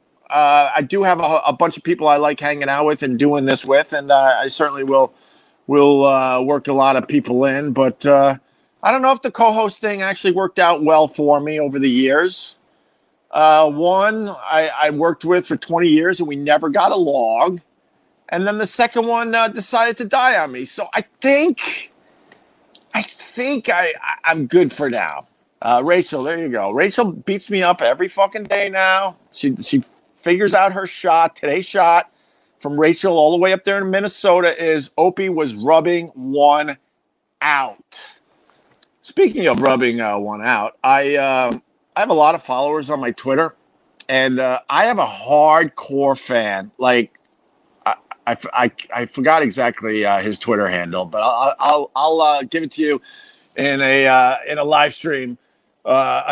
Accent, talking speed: American, 185 wpm